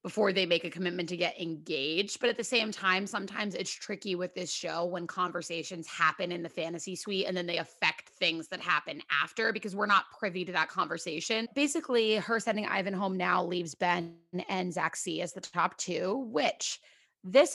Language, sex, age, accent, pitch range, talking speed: English, female, 30-49, American, 175-240 Hz, 200 wpm